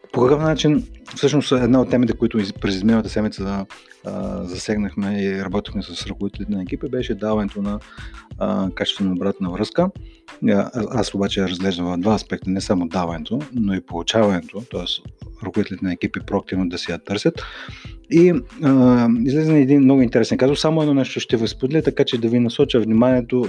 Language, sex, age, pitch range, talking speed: Bulgarian, male, 30-49, 95-125 Hz, 155 wpm